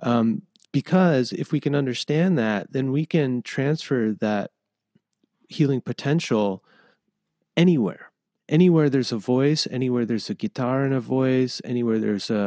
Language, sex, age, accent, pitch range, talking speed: English, male, 30-49, American, 110-140 Hz, 140 wpm